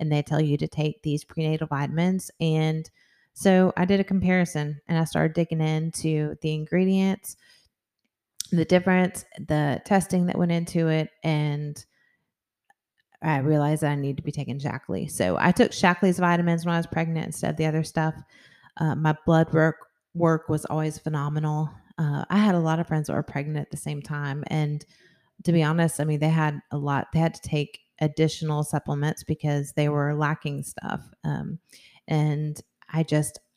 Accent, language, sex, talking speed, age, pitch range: American, English, female, 180 wpm, 30-49, 150-170 Hz